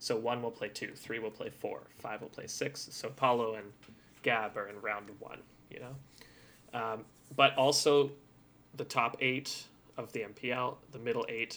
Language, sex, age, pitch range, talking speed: English, male, 20-39, 110-135 Hz, 180 wpm